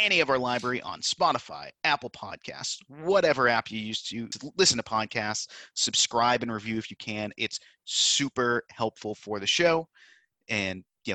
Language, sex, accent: English, male, American